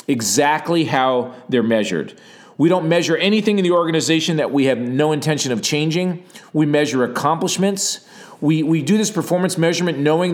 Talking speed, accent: 160 wpm, American